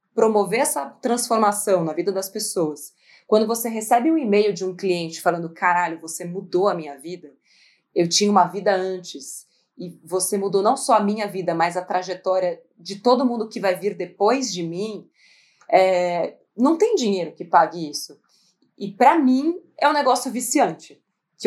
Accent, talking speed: Brazilian, 175 wpm